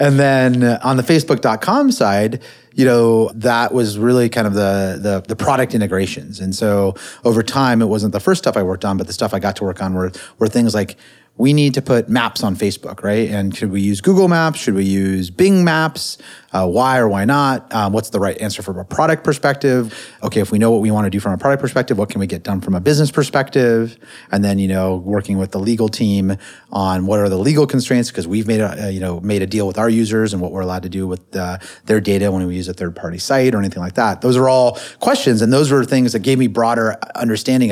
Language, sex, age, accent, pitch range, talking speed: English, male, 30-49, American, 100-130 Hz, 250 wpm